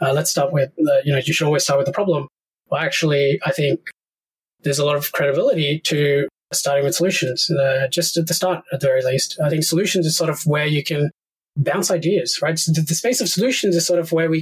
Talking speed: 235 wpm